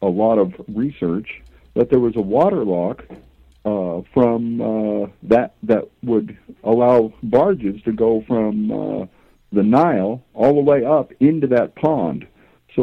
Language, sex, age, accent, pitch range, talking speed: English, male, 60-79, American, 105-155 Hz, 150 wpm